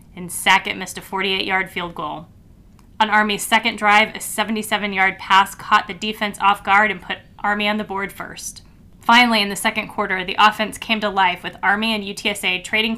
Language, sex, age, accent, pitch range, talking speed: English, female, 10-29, American, 195-225 Hz, 190 wpm